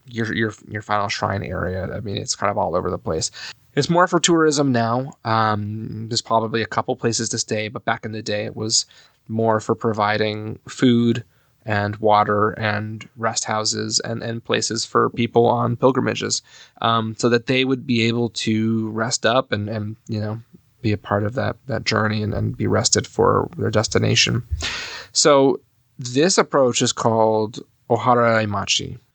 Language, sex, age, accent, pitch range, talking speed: English, male, 20-39, American, 110-125 Hz, 175 wpm